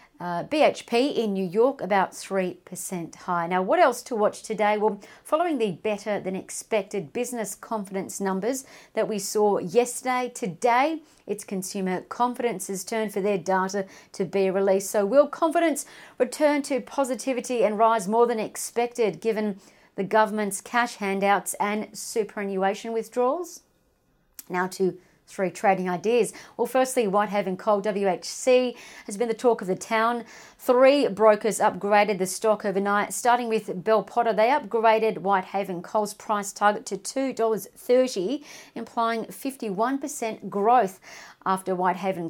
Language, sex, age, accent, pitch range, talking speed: English, female, 40-59, Australian, 195-245 Hz, 140 wpm